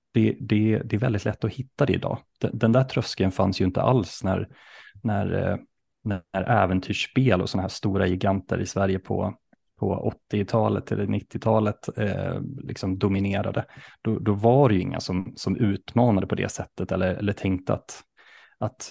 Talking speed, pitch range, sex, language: 170 wpm, 95-120 Hz, male, Swedish